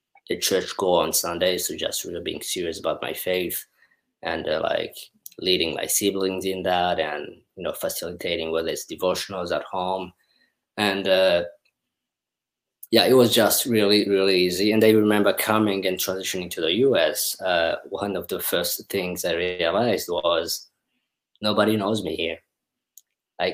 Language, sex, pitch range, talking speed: English, male, 90-110 Hz, 160 wpm